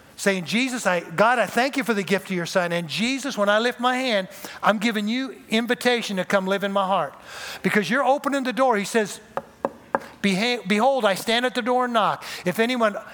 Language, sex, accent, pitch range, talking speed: English, male, American, 195-245 Hz, 215 wpm